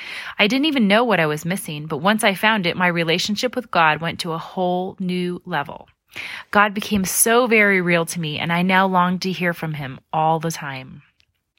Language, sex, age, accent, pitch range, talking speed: English, female, 30-49, American, 165-210 Hz, 210 wpm